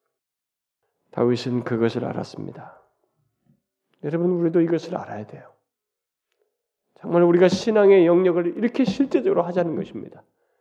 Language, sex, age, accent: Korean, male, 40-59, native